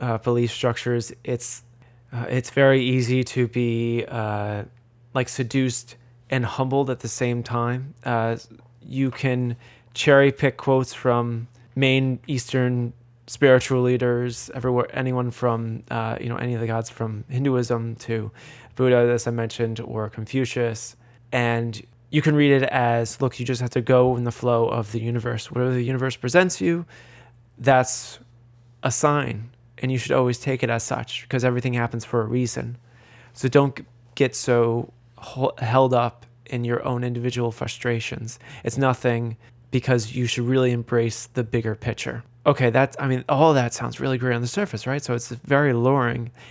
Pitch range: 120-130 Hz